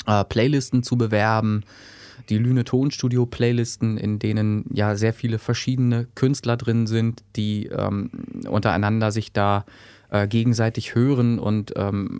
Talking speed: 120 wpm